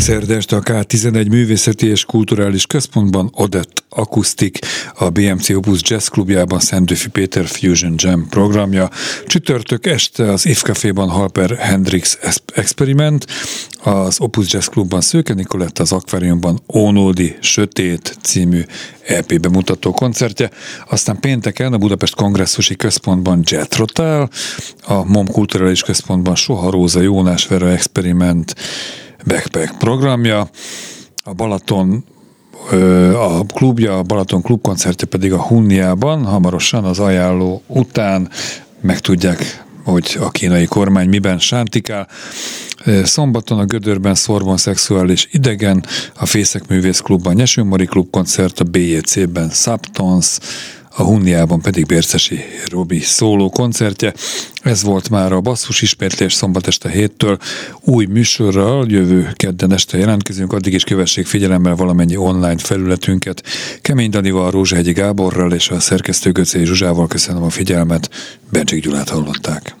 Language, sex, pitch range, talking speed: Hungarian, male, 90-110 Hz, 120 wpm